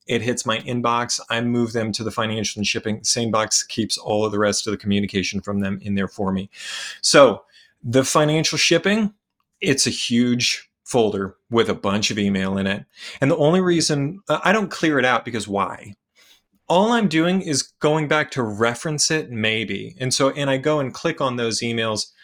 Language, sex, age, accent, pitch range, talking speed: English, male, 30-49, American, 105-150 Hz, 200 wpm